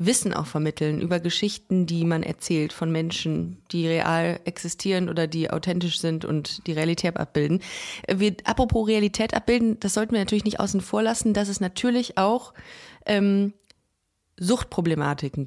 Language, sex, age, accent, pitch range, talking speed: German, female, 30-49, German, 170-215 Hz, 150 wpm